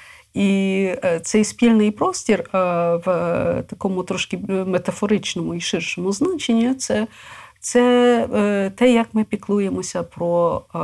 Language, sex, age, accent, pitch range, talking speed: Ukrainian, female, 50-69, native, 170-220 Hz, 100 wpm